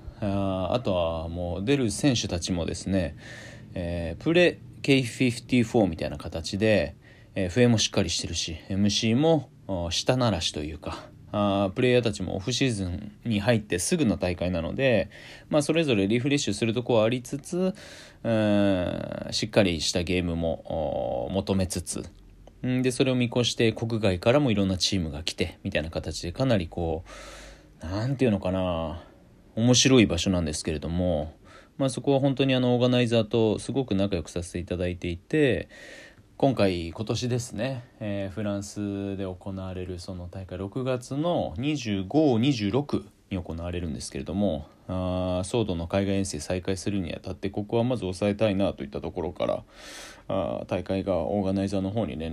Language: Japanese